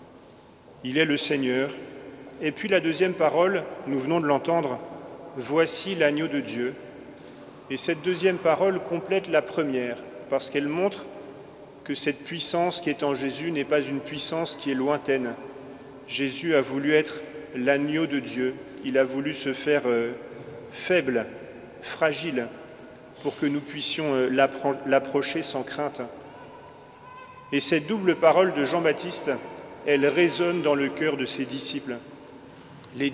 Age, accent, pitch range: 40-59, French, 140-170 Hz